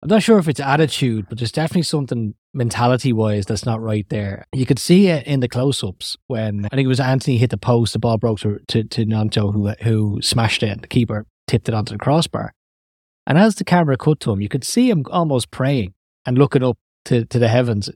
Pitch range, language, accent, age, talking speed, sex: 105-135 Hz, English, Irish, 20-39, 240 wpm, male